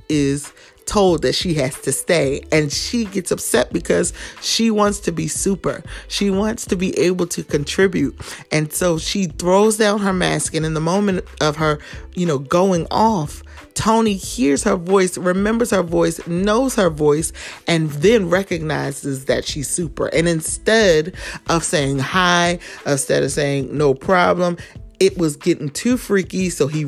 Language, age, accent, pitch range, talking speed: English, 30-49, American, 150-190 Hz, 165 wpm